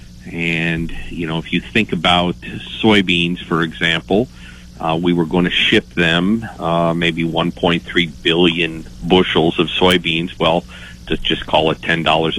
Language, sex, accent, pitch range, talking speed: English, male, American, 80-90 Hz, 145 wpm